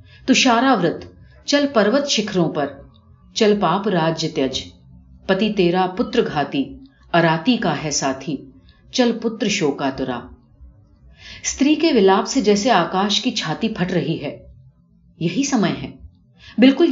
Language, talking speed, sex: Urdu, 130 wpm, female